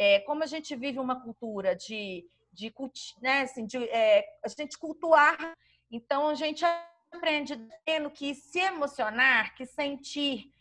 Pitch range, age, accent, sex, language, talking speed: 240-310 Hz, 30-49, Brazilian, female, Portuguese, 120 wpm